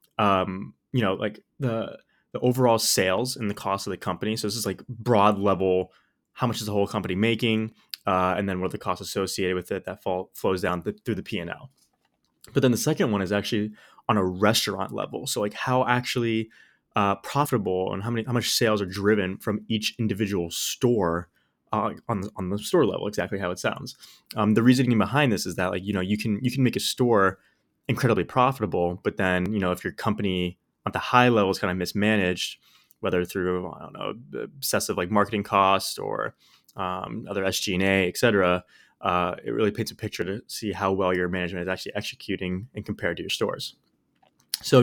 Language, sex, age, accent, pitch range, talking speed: English, male, 20-39, American, 95-115 Hz, 215 wpm